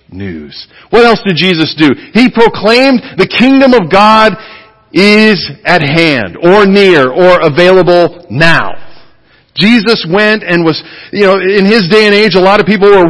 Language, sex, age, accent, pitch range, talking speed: English, male, 40-59, American, 190-235 Hz, 165 wpm